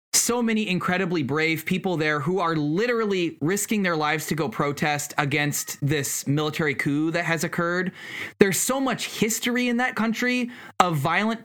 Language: English